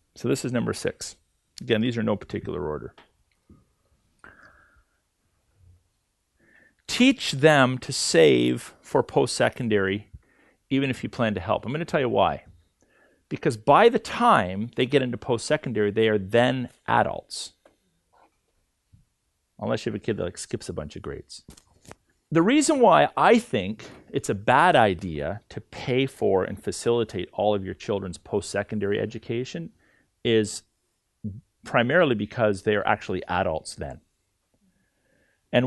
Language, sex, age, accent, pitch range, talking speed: English, male, 40-59, American, 105-140 Hz, 135 wpm